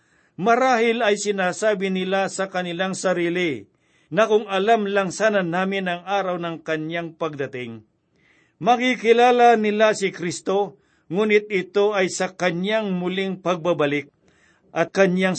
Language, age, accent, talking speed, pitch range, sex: Filipino, 50-69, native, 120 wpm, 165-200 Hz, male